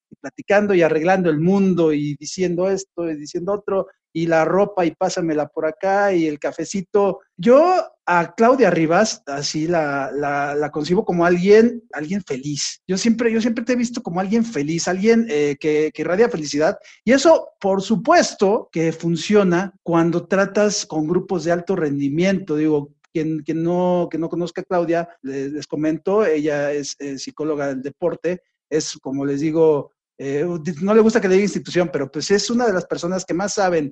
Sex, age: male, 40-59